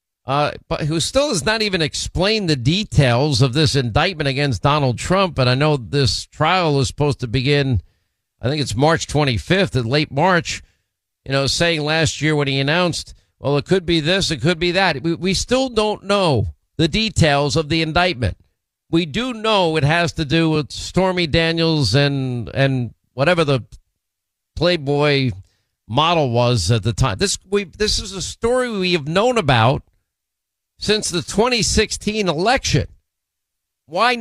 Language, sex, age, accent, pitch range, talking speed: English, male, 50-69, American, 125-175 Hz, 165 wpm